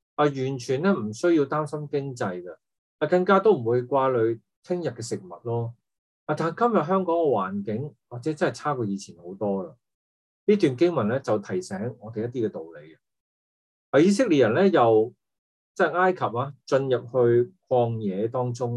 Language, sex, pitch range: Chinese, male, 115-175 Hz